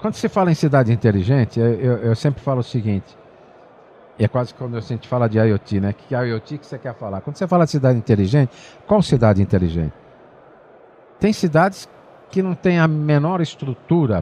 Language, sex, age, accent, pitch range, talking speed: Portuguese, male, 50-69, Brazilian, 115-160 Hz, 200 wpm